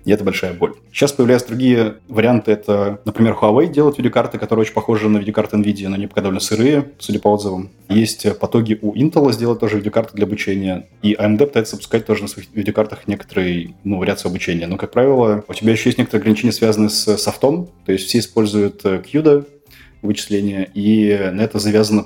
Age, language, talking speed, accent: 20-39, Russian, 190 wpm, native